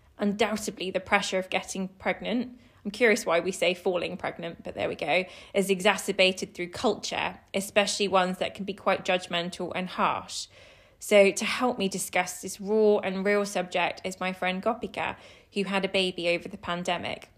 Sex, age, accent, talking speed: female, 20-39, British, 175 wpm